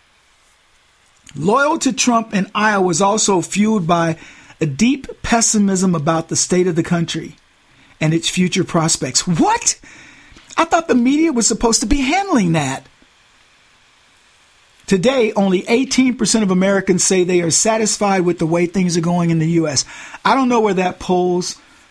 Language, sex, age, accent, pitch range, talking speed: English, male, 50-69, American, 175-235 Hz, 155 wpm